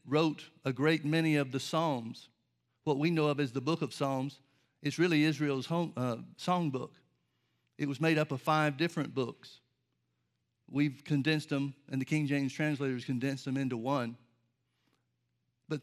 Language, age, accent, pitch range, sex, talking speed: English, 50-69, American, 130-160 Hz, male, 165 wpm